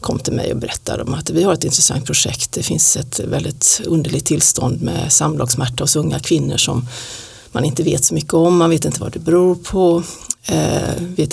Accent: Swedish